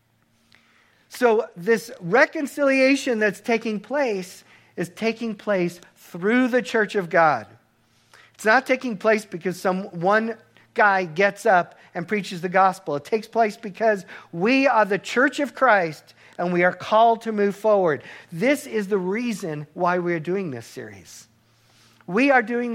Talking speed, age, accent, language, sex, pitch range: 155 wpm, 50-69, American, English, male, 150-215 Hz